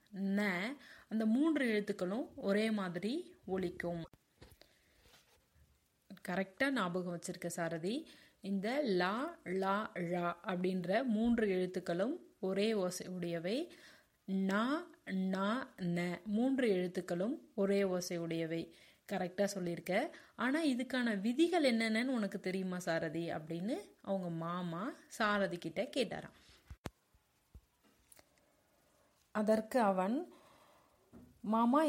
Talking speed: 85 wpm